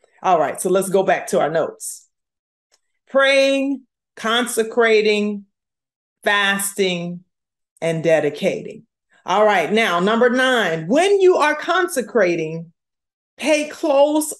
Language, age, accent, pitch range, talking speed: English, 40-59, American, 185-255 Hz, 105 wpm